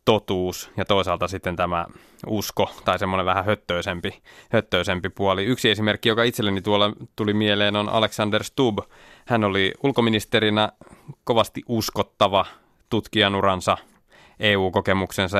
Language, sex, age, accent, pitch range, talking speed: Finnish, male, 20-39, native, 100-110 Hz, 115 wpm